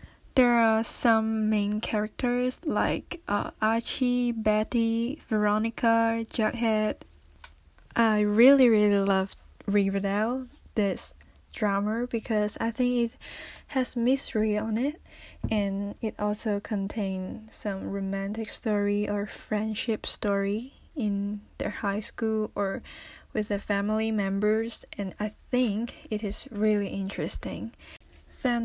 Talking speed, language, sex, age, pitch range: 110 wpm, English, female, 10-29, 205-235 Hz